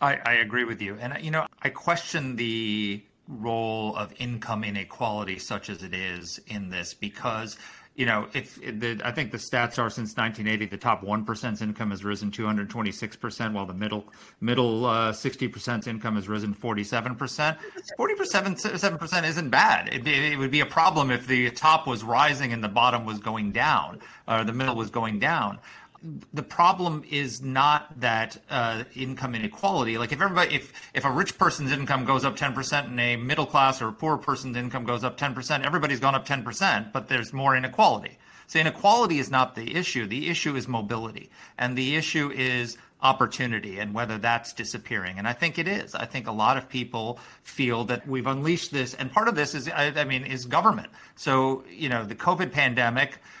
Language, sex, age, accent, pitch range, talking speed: English, male, 40-59, American, 110-140 Hz, 190 wpm